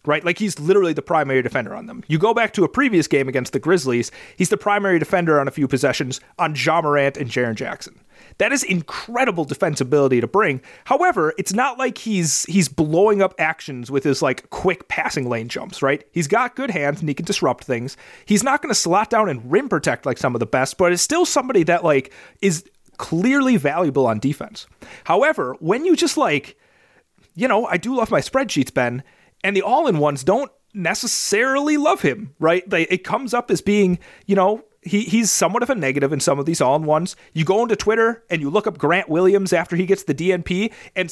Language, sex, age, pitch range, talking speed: English, male, 30-49, 145-210 Hz, 210 wpm